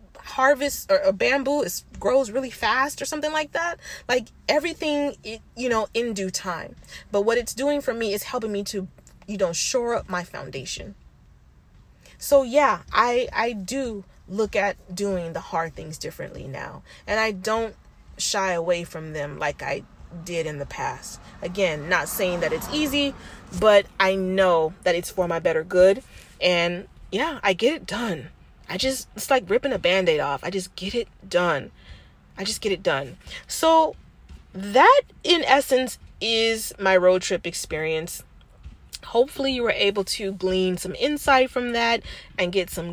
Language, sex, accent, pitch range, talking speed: English, female, American, 185-265 Hz, 170 wpm